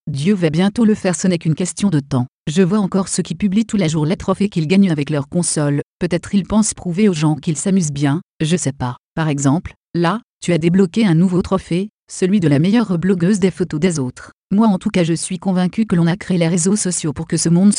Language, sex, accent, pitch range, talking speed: French, female, French, 160-195 Hz, 255 wpm